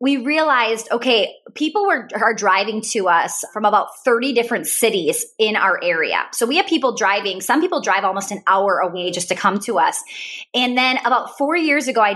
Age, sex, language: 20-39, female, English